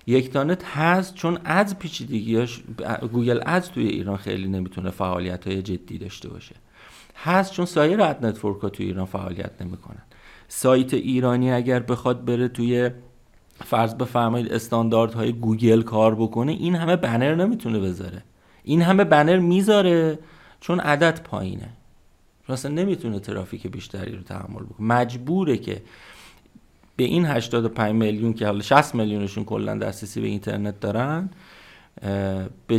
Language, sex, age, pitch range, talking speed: Persian, male, 40-59, 100-140 Hz, 135 wpm